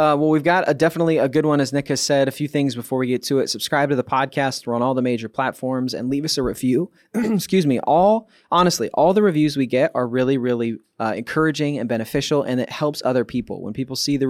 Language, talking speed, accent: English, 255 wpm, American